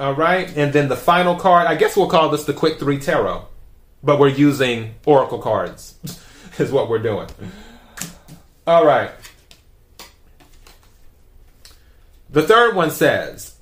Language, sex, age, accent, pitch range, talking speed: English, male, 30-49, American, 140-175 Hz, 135 wpm